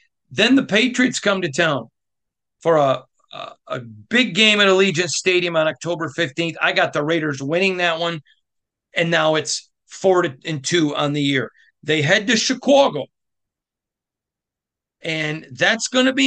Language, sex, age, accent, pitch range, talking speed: English, male, 40-59, American, 140-190 Hz, 150 wpm